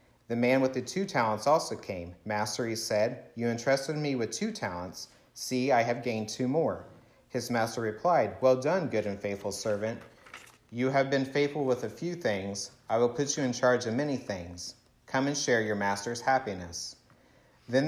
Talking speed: 190 wpm